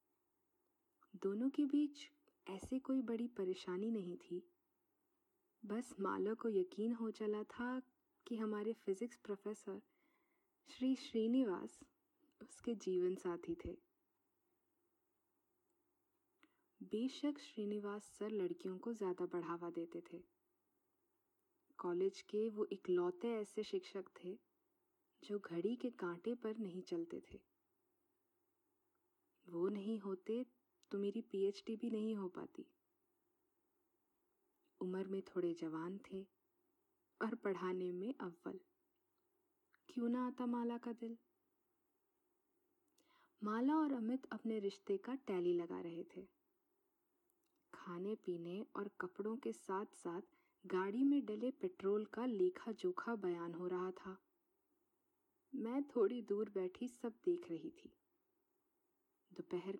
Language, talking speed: Hindi, 115 wpm